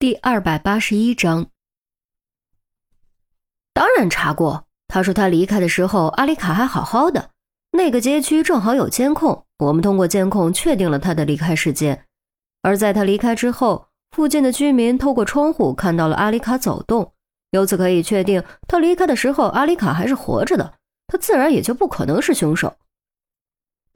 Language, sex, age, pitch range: Chinese, male, 20-39, 155-240 Hz